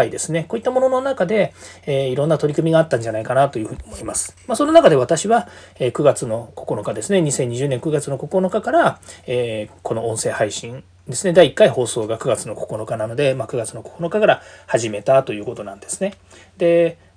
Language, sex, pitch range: Japanese, male, 120-200 Hz